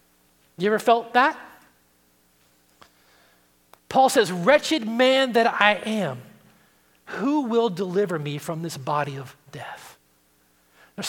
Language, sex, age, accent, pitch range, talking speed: English, male, 30-49, American, 195-300 Hz, 115 wpm